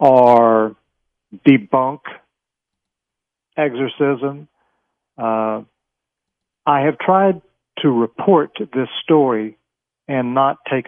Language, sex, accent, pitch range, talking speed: English, male, American, 115-150 Hz, 75 wpm